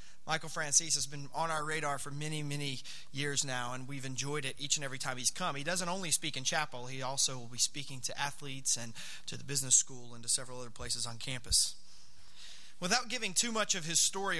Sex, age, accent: male, 30-49, American